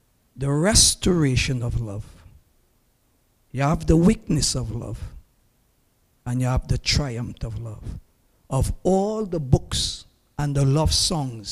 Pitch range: 120-160 Hz